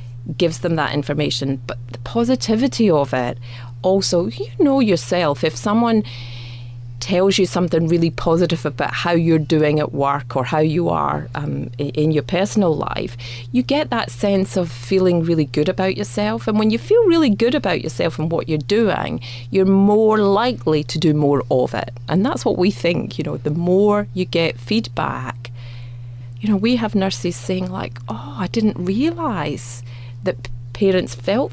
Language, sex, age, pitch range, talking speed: English, female, 30-49, 125-185 Hz, 175 wpm